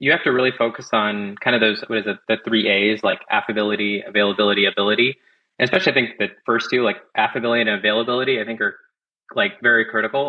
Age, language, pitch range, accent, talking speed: 20-39, English, 105-120 Hz, American, 210 wpm